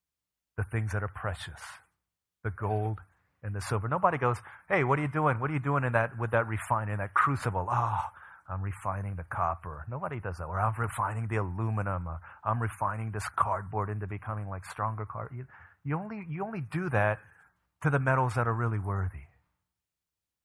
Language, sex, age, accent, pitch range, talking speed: English, male, 30-49, American, 95-115 Hz, 190 wpm